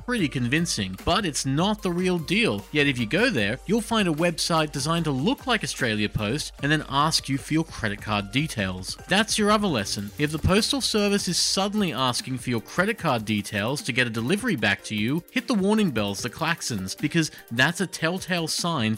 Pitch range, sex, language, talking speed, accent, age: 115-190 Hz, male, English, 210 wpm, Australian, 30-49